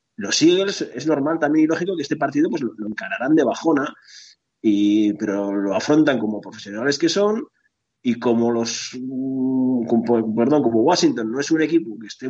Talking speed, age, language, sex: 160 wpm, 30-49, Spanish, male